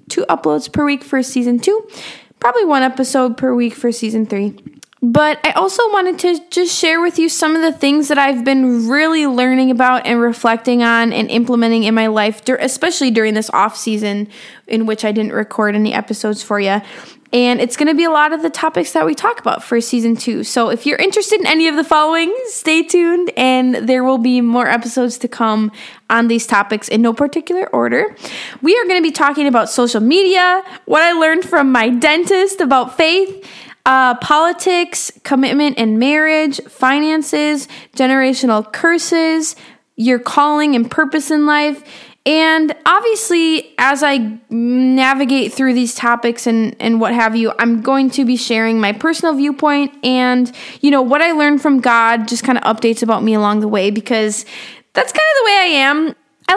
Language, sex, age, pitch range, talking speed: English, female, 10-29, 230-310 Hz, 190 wpm